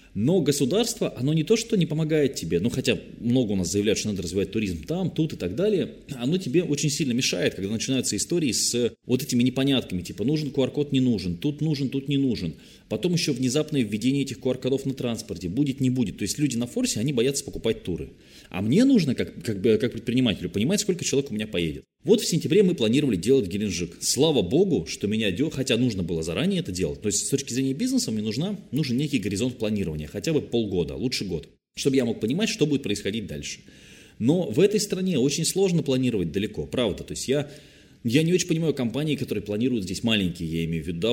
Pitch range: 105-145 Hz